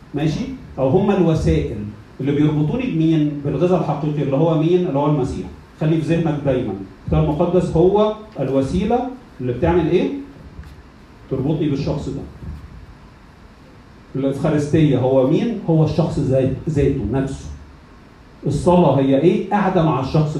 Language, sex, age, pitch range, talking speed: Arabic, male, 40-59, 125-175 Hz, 125 wpm